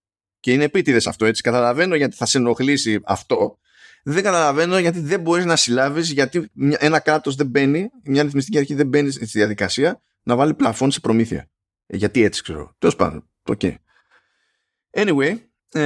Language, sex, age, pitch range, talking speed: Greek, male, 20-39, 105-145 Hz, 165 wpm